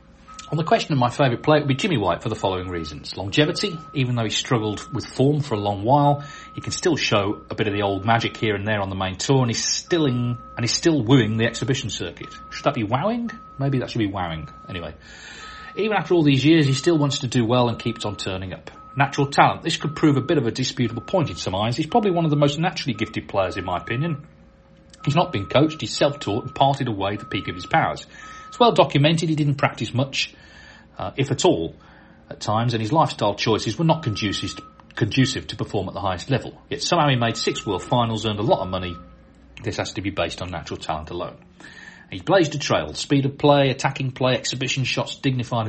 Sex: male